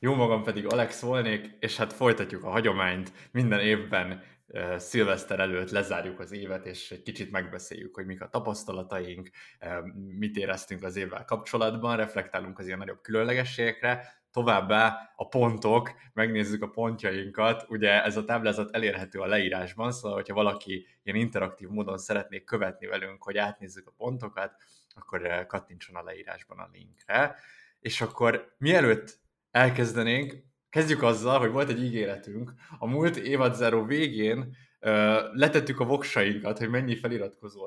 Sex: male